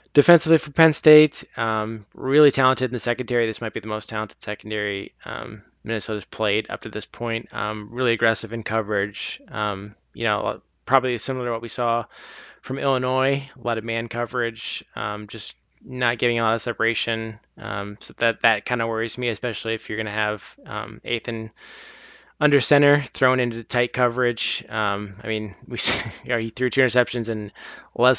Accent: American